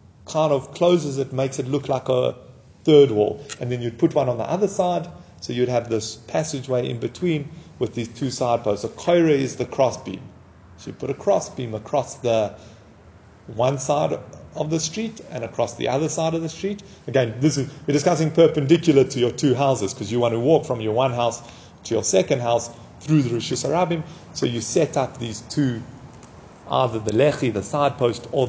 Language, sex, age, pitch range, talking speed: English, male, 30-49, 125-160 Hz, 210 wpm